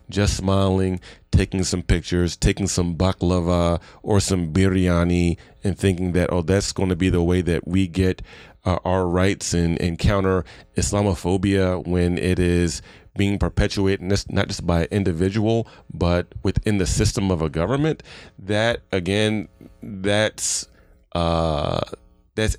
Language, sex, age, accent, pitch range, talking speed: English, male, 30-49, American, 85-100 Hz, 145 wpm